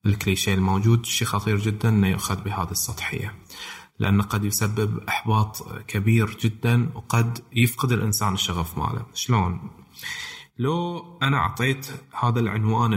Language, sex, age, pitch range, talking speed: Arabic, male, 20-39, 105-145 Hz, 120 wpm